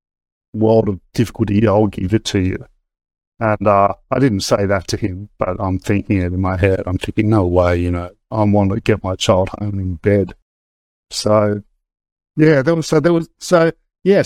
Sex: male